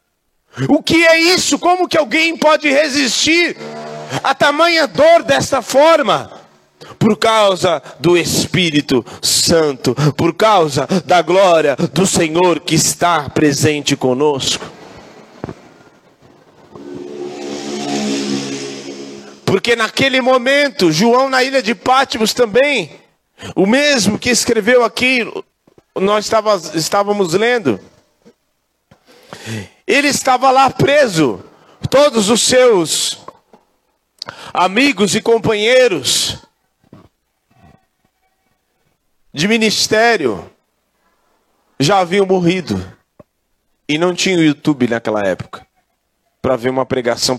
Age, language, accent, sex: 40-59, Portuguese, Brazilian, male